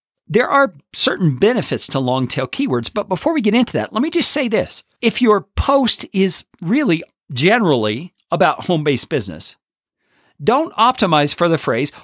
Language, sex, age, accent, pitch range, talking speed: English, male, 50-69, American, 135-215 Hz, 160 wpm